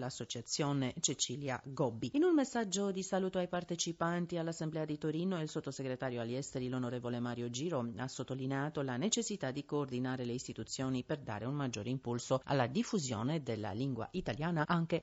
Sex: female